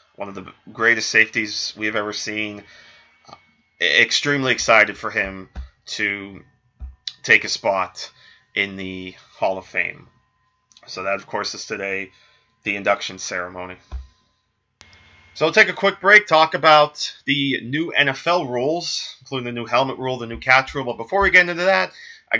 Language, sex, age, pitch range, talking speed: English, male, 20-39, 105-145 Hz, 160 wpm